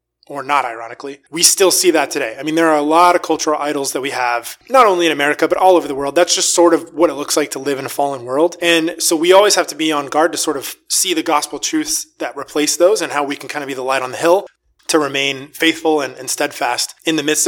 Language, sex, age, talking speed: English, male, 20-39, 285 wpm